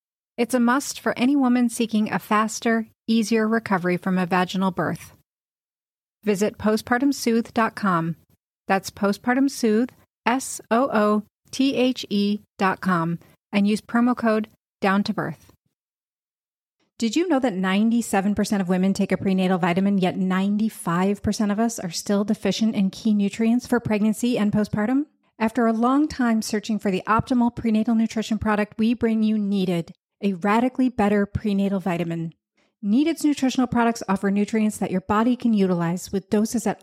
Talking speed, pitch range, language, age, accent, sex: 135 wpm, 195-235 Hz, English, 30-49, American, female